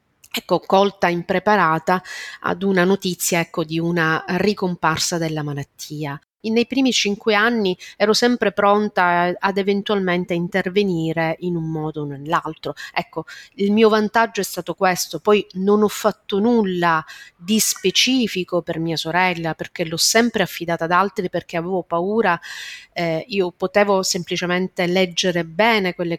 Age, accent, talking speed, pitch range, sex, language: 30-49, native, 135 wpm, 160-195 Hz, female, Italian